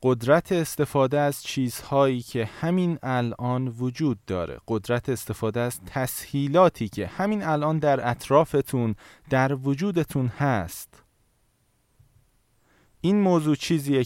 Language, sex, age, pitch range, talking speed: Persian, male, 20-39, 120-150 Hz, 100 wpm